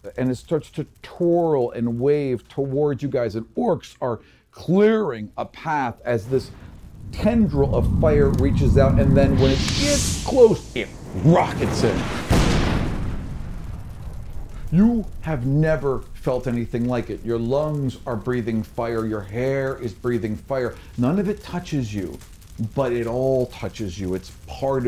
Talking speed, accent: 145 wpm, American